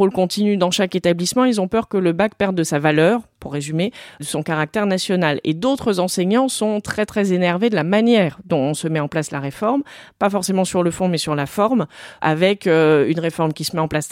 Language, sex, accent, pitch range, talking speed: French, female, French, 160-205 Hz, 240 wpm